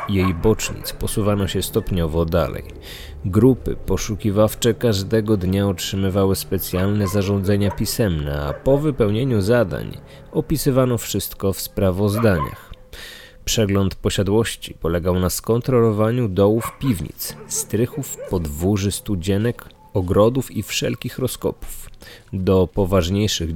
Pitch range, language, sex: 95-115 Hz, Polish, male